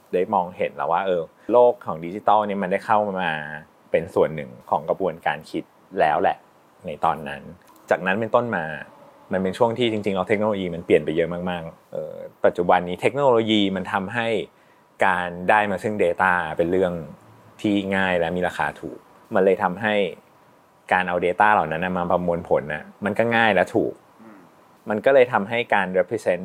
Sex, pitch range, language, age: male, 90-110 Hz, Thai, 20-39